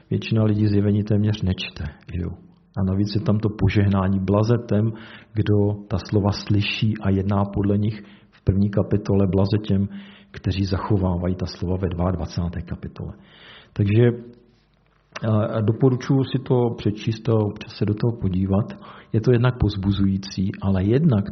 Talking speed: 135 wpm